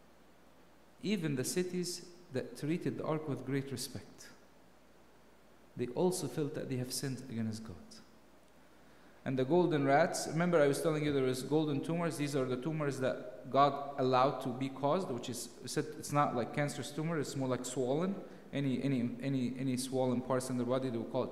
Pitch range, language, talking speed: 130-165 Hz, English, 190 wpm